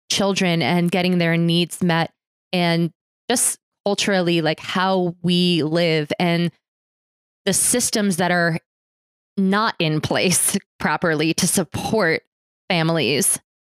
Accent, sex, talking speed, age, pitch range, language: American, female, 110 wpm, 20-39, 170-195 Hz, English